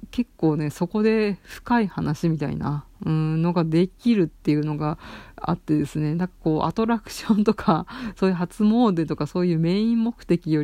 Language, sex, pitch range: Japanese, female, 150-185 Hz